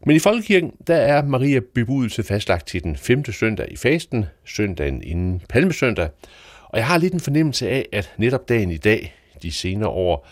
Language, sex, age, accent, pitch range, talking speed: Danish, male, 60-79, native, 85-120 Hz, 180 wpm